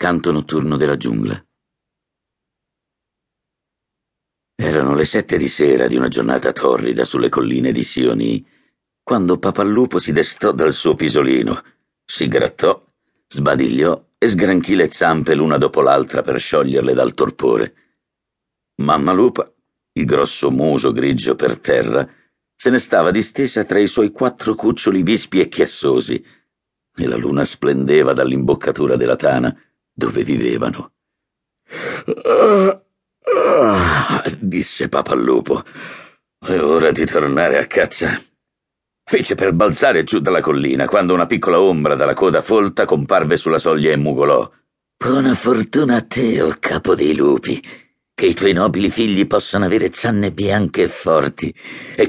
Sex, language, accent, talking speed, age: male, Italian, native, 135 wpm, 60-79